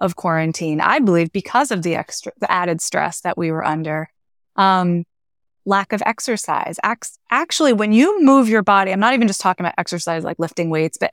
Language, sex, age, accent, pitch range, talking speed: English, female, 20-39, American, 170-220 Hz, 195 wpm